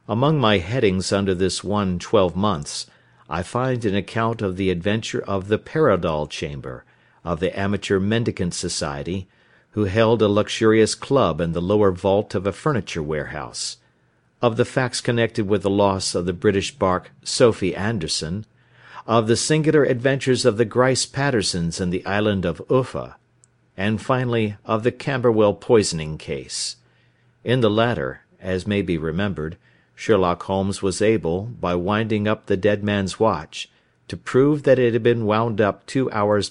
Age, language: 50-69, Korean